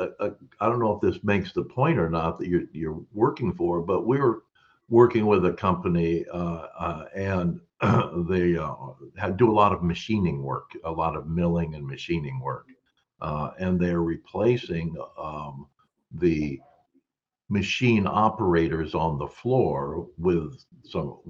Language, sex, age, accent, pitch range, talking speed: English, male, 60-79, American, 85-120 Hz, 150 wpm